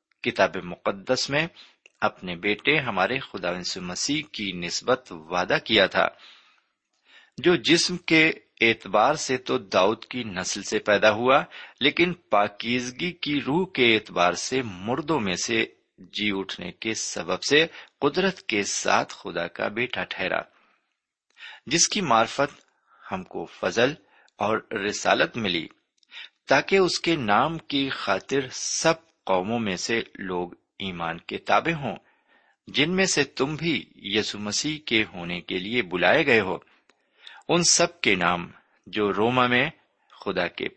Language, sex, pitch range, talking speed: Urdu, male, 95-150 Hz, 140 wpm